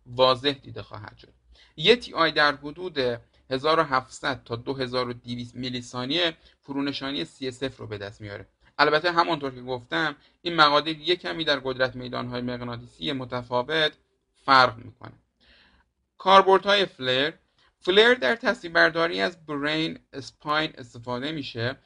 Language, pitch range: Persian, 125-155 Hz